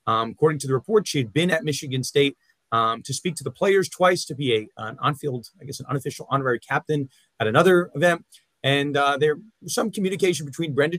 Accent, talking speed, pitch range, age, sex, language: American, 225 wpm, 130-165 Hz, 30-49, male, English